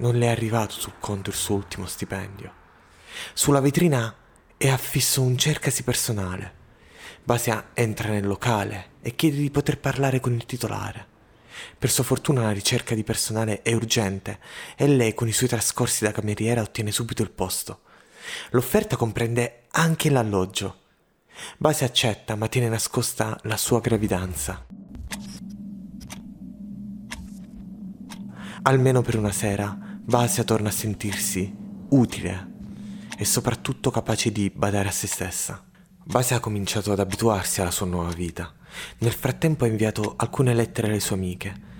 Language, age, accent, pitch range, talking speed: Italian, 30-49, native, 100-140 Hz, 140 wpm